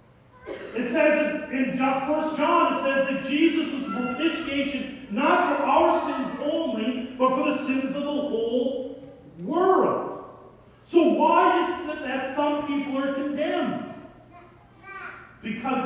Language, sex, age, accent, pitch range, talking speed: English, male, 40-59, American, 235-295 Hz, 130 wpm